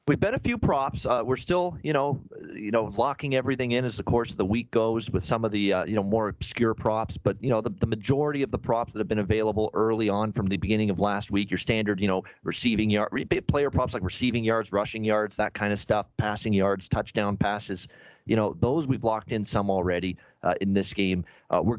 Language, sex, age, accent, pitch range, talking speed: English, male, 40-59, American, 95-110 Hz, 240 wpm